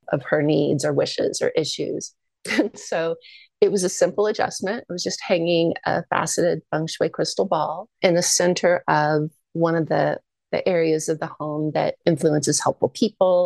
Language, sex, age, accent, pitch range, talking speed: English, female, 30-49, American, 155-200 Hz, 175 wpm